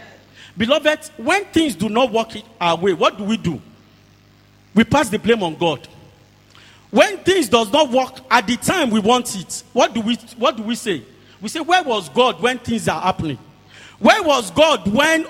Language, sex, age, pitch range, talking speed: English, male, 40-59, 175-275 Hz, 190 wpm